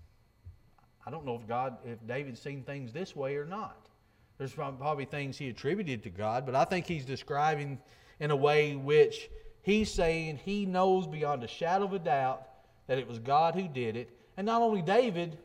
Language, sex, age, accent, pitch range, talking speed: English, male, 40-59, American, 120-170 Hz, 195 wpm